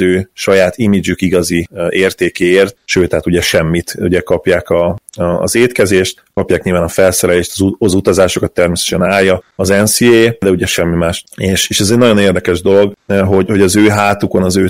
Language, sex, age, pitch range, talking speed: Hungarian, male, 30-49, 95-105 Hz, 180 wpm